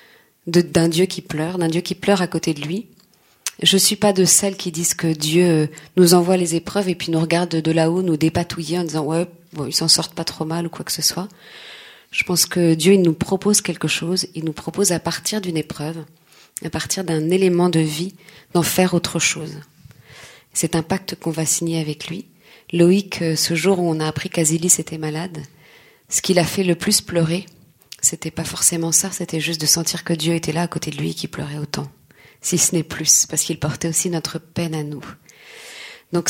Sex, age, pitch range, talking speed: female, 40-59, 160-185 Hz, 220 wpm